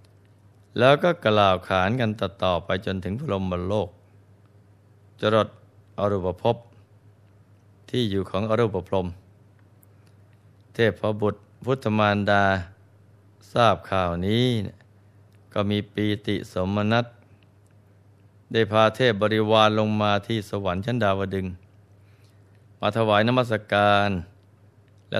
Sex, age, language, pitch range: male, 20-39, Thai, 100-105 Hz